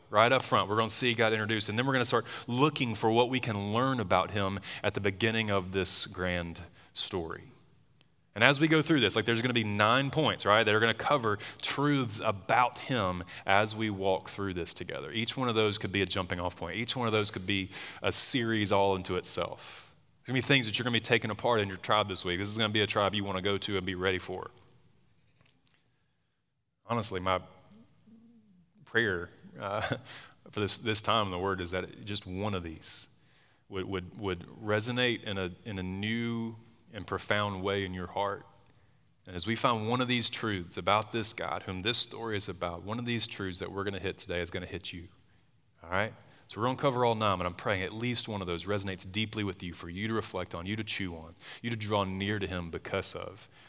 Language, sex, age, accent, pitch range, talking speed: English, male, 20-39, American, 95-120 Hz, 240 wpm